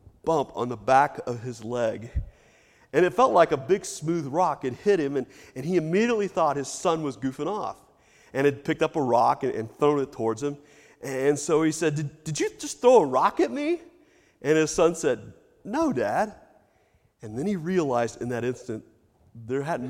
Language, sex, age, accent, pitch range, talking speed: English, male, 40-59, American, 125-165 Hz, 205 wpm